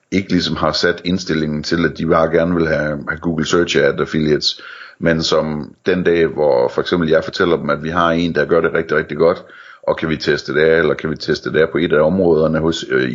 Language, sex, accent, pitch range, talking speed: Danish, male, native, 80-85 Hz, 240 wpm